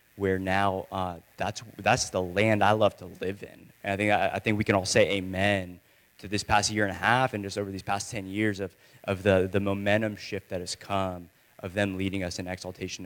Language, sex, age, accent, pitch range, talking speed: English, male, 20-39, American, 95-115 Hz, 240 wpm